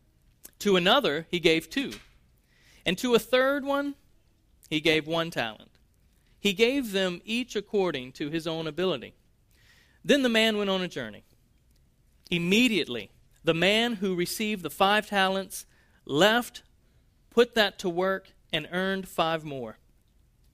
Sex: male